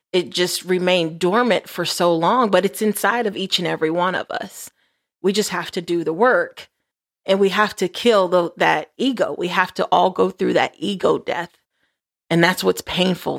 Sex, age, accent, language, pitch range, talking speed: female, 30-49, American, English, 170-215 Hz, 195 wpm